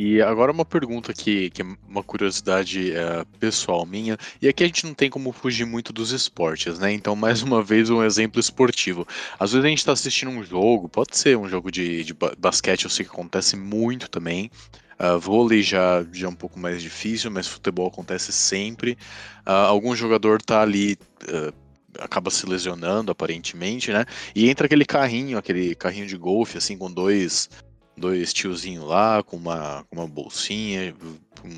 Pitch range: 90-115 Hz